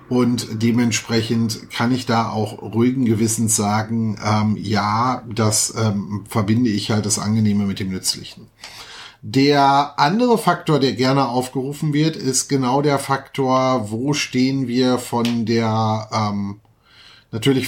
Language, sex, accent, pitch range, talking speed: German, male, German, 115-145 Hz, 130 wpm